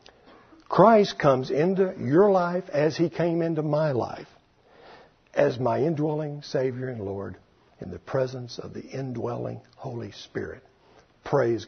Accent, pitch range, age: American, 100-145 Hz, 60-79